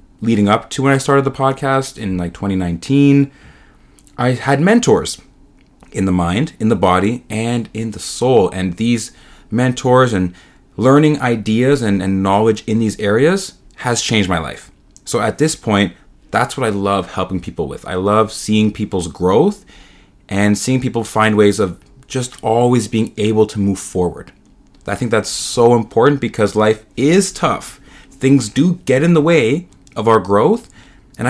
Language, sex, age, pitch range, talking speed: English, male, 30-49, 100-130 Hz, 170 wpm